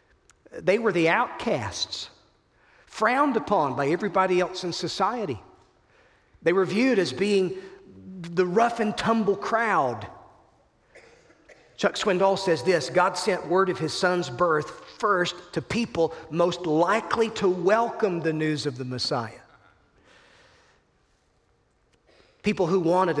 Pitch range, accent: 160-195 Hz, American